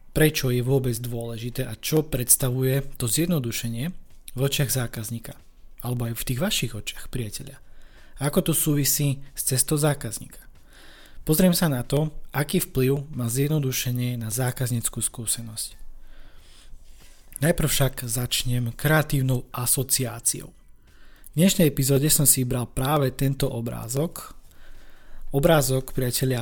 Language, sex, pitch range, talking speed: Slovak, male, 120-140 Hz, 120 wpm